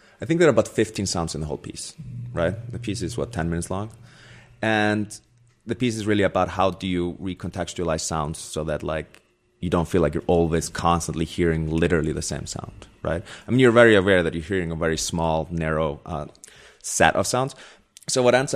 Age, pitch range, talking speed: 30-49, 85-105 Hz, 210 wpm